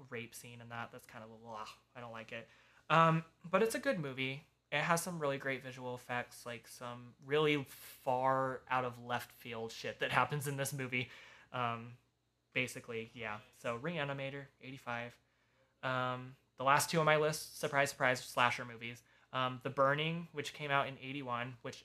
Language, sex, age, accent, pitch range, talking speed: English, male, 20-39, American, 115-135 Hz, 180 wpm